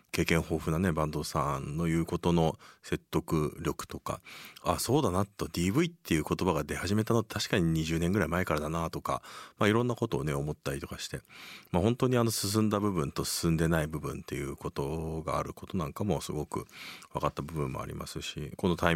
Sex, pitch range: male, 80-115 Hz